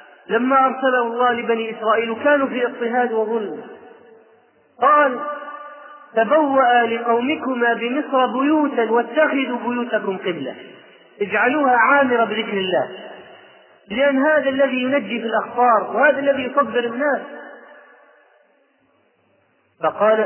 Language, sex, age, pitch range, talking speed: Arabic, male, 30-49, 220-270 Hz, 95 wpm